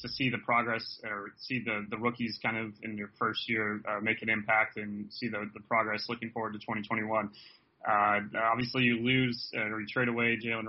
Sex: male